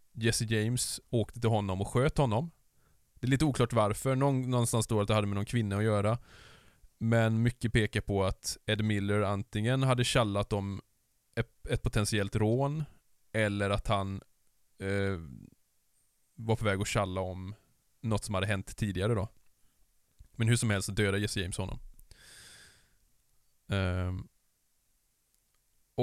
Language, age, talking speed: Swedish, 20-39, 150 wpm